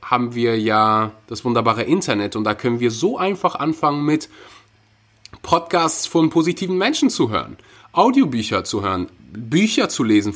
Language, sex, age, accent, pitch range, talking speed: German, male, 30-49, German, 110-145 Hz, 150 wpm